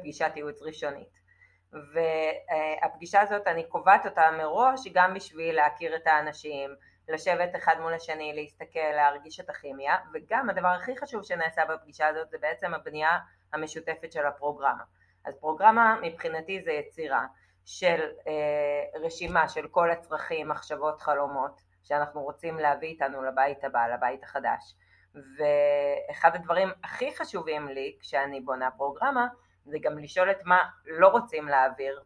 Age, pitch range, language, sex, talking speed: 30-49, 150-175 Hz, Hebrew, female, 135 wpm